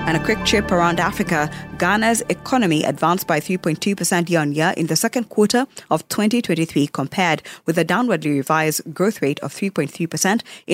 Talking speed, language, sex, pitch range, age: 150 wpm, English, female, 160-200 Hz, 20-39